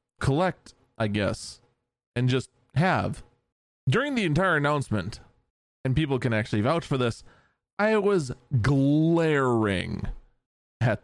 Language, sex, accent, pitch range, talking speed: English, male, American, 110-140 Hz, 115 wpm